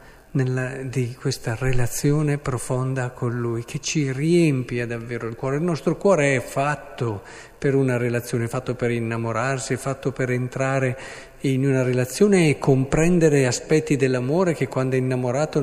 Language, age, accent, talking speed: Italian, 50-69, native, 145 wpm